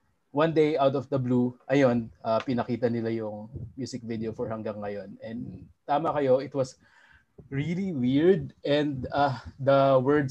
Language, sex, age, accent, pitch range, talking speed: Filipino, male, 20-39, native, 115-140 Hz, 155 wpm